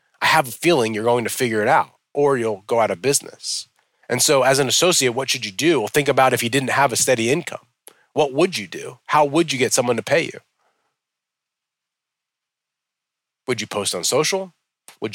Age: 30-49